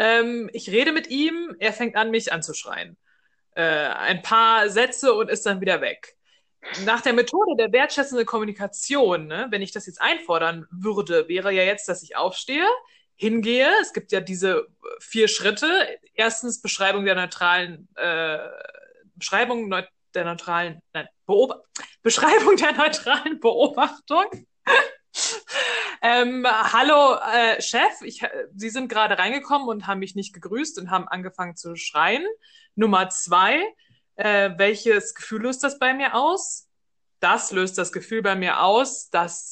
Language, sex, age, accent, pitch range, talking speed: German, female, 20-39, German, 195-290 Hz, 145 wpm